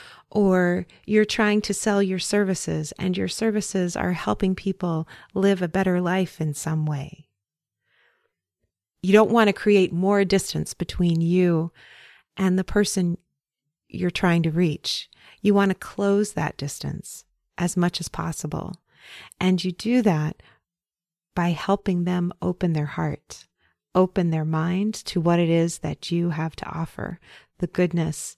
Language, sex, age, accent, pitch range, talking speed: English, female, 30-49, American, 155-190 Hz, 150 wpm